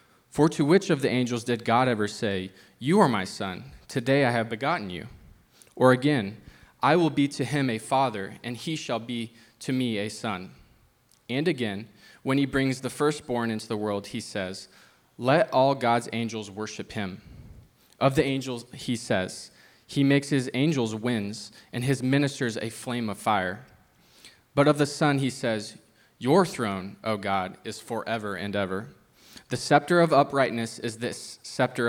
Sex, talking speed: male, 175 wpm